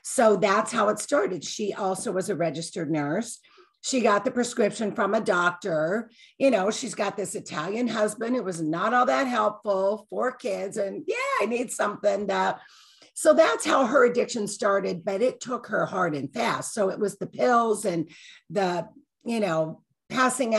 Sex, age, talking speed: female, 50-69, 185 wpm